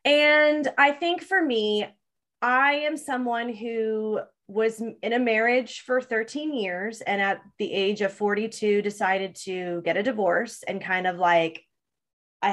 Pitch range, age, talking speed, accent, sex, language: 190-230 Hz, 20-39, 155 wpm, American, female, English